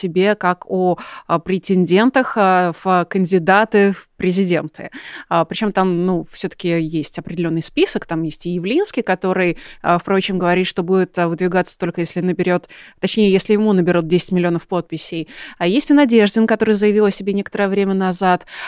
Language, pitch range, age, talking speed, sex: Russian, 180-220 Hz, 20-39, 150 wpm, female